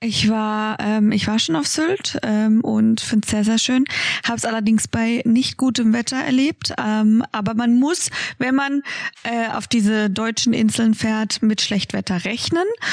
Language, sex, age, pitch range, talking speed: German, female, 20-39, 205-240 Hz, 175 wpm